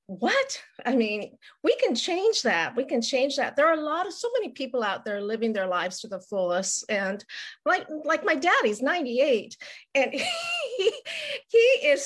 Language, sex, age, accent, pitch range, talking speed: English, female, 40-59, American, 215-275 Hz, 190 wpm